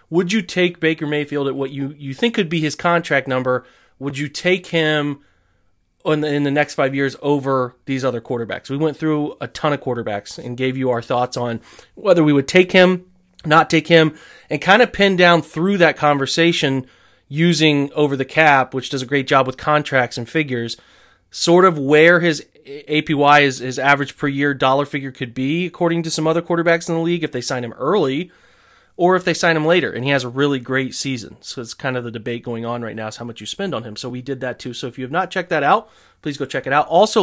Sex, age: male, 30-49